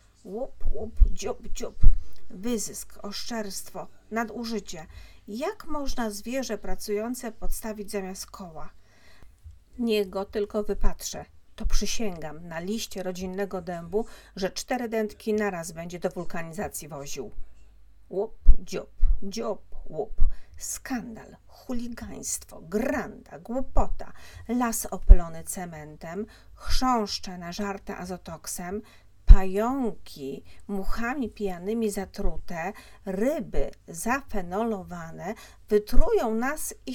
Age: 40-59